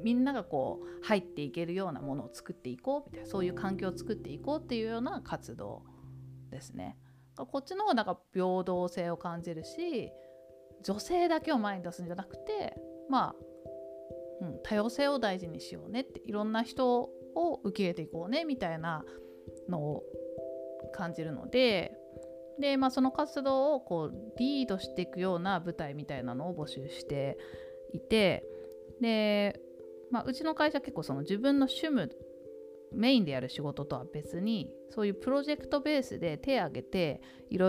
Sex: female